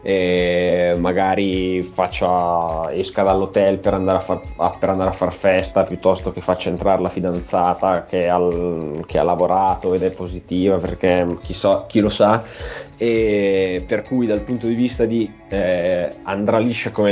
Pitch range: 95-110 Hz